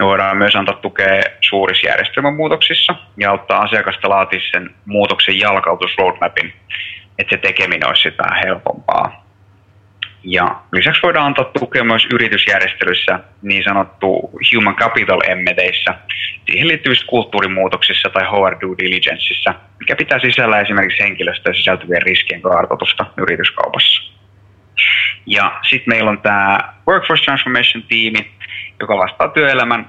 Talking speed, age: 110 wpm, 20-39